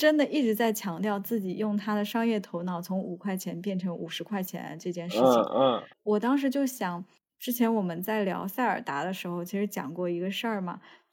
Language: Chinese